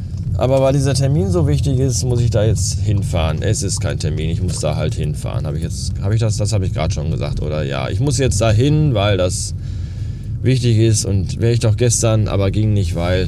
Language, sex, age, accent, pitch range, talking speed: German, male, 20-39, German, 100-120 Hz, 230 wpm